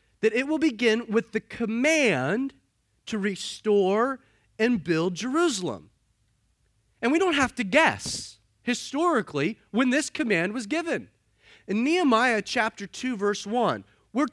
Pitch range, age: 175-280 Hz, 30-49